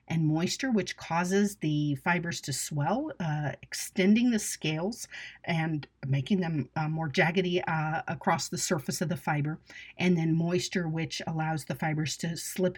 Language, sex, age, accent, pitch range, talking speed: English, female, 40-59, American, 150-180 Hz, 160 wpm